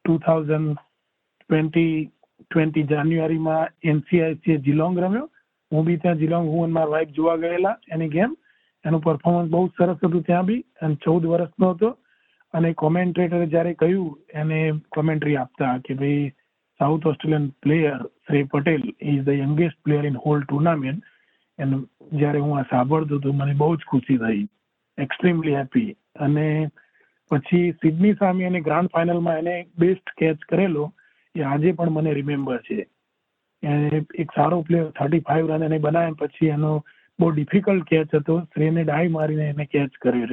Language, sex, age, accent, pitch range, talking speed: Gujarati, male, 40-59, native, 150-175 Hz, 100 wpm